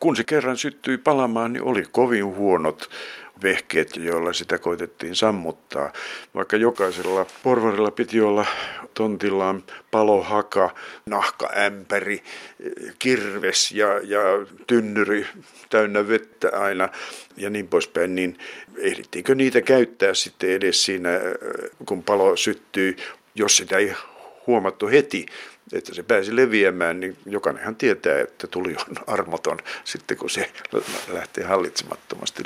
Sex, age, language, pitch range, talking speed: male, 60-79, Finnish, 100-150 Hz, 120 wpm